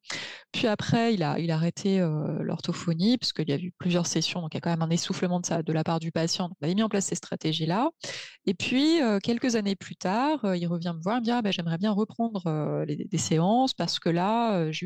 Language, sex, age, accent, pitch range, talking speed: French, female, 20-39, French, 165-215 Hz, 275 wpm